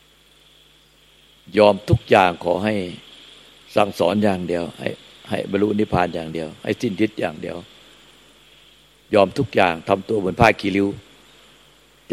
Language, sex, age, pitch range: Thai, male, 60-79, 90-110 Hz